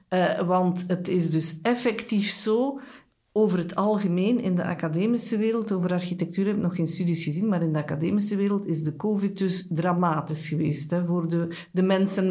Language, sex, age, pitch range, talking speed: Dutch, female, 50-69, 170-205 Hz, 180 wpm